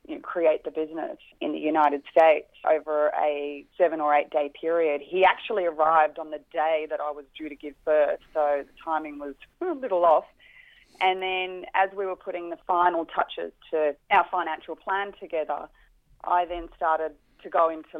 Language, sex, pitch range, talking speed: English, female, 155-180 Hz, 180 wpm